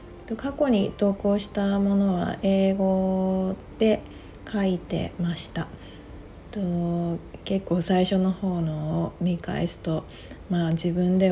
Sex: female